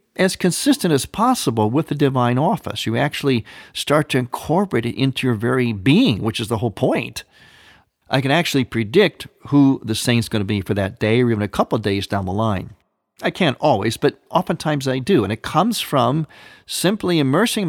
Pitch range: 110-150 Hz